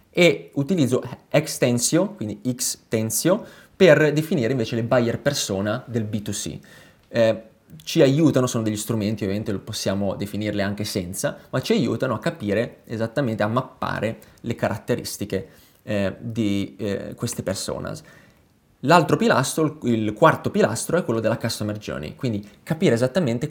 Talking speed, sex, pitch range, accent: 135 wpm, male, 105-130 Hz, native